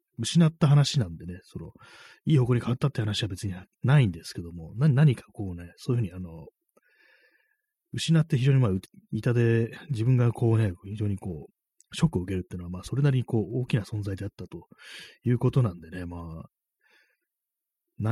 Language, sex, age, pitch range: Japanese, male, 30-49, 95-135 Hz